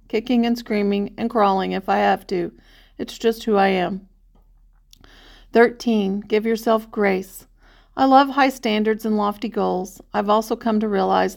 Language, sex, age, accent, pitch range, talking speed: English, female, 40-59, American, 195-230 Hz, 160 wpm